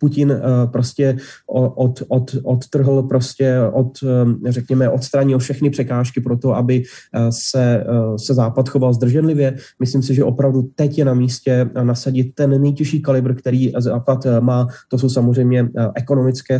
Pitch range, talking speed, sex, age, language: 120-130 Hz, 140 wpm, male, 20-39, Slovak